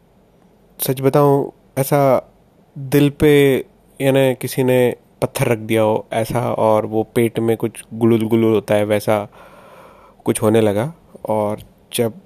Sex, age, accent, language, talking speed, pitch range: male, 30-49, native, Hindi, 135 wpm, 110-130 Hz